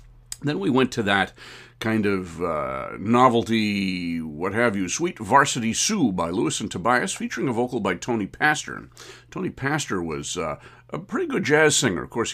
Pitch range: 95-125 Hz